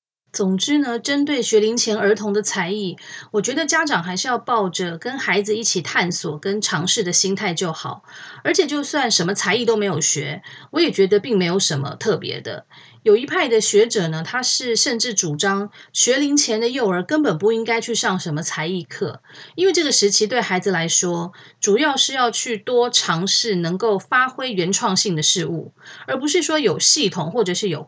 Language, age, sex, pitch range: Chinese, 30-49, female, 180-245 Hz